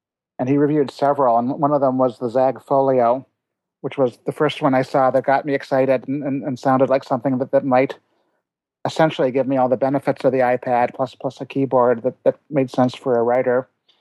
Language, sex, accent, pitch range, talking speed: English, male, American, 125-140 Hz, 220 wpm